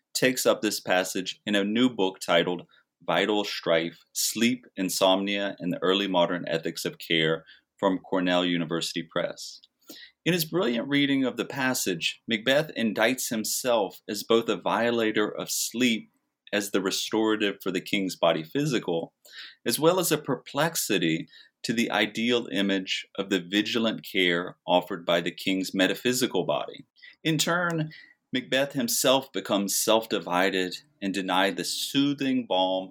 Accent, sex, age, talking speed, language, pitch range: American, male, 30-49, 140 wpm, English, 90-120 Hz